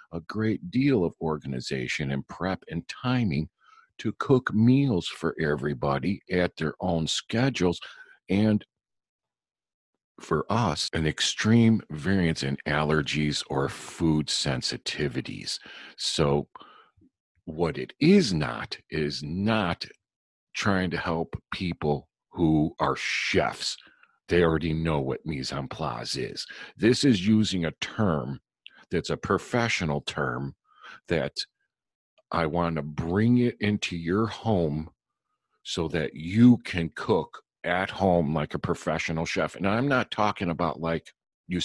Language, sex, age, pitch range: English, male, 50-69, 75-105 Hz